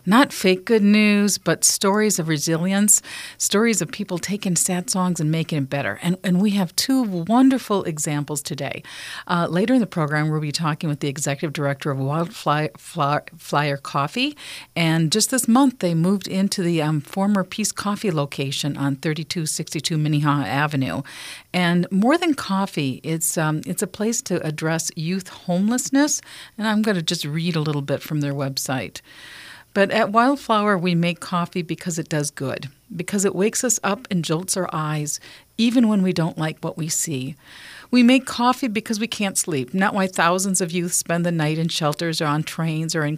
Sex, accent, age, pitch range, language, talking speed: female, American, 50-69, 150-200 Hz, English, 190 wpm